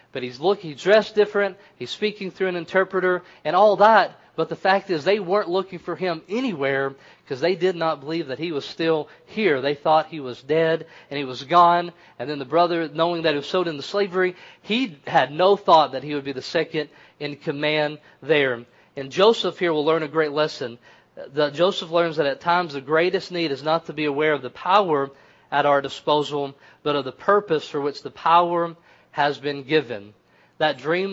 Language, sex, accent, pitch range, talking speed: English, male, American, 145-180 Hz, 210 wpm